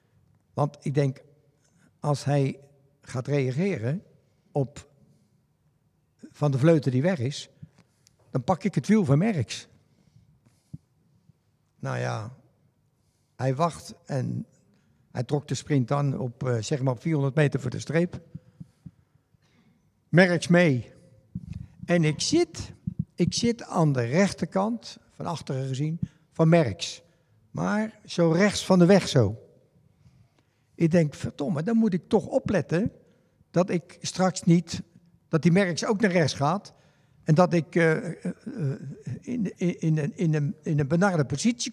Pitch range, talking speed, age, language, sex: 140-185 Hz, 135 wpm, 60-79, Dutch, male